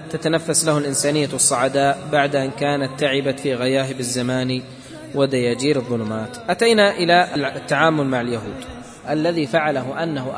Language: Arabic